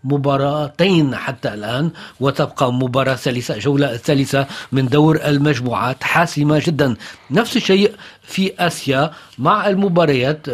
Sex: male